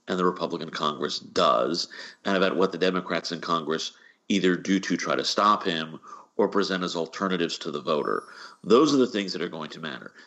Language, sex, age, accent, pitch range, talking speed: English, male, 40-59, American, 85-100 Hz, 205 wpm